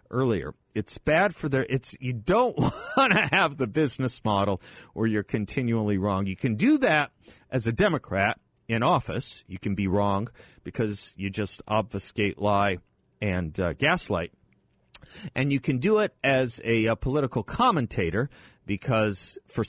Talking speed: 155 wpm